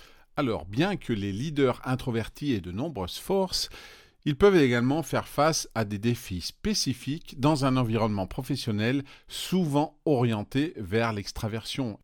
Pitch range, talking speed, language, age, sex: 105-150 Hz, 135 wpm, French, 40-59, male